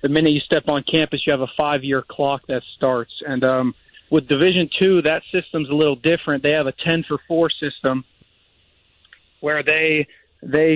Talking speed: 190 wpm